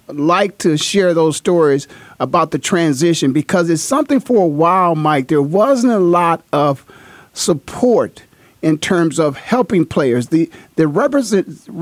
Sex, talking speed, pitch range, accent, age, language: male, 145 wpm, 155-190 Hz, American, 50-69, English